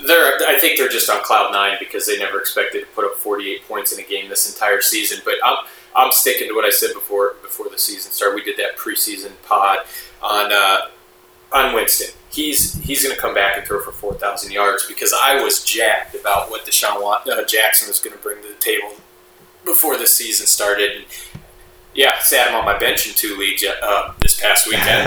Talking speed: 215 wpm